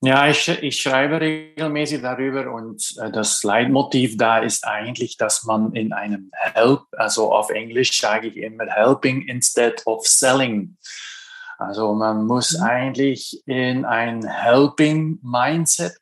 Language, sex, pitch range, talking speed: German, male, 115-150 Hz, 125 wpm